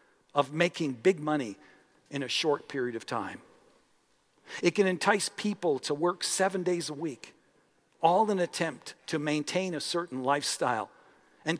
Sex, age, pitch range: male, 50-69, 155-220 Hz